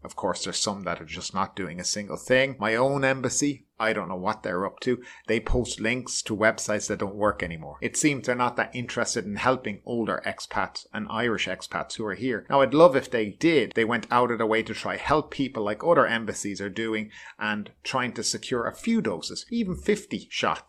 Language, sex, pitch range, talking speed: English, male, 105-130 Hz, 225 wpm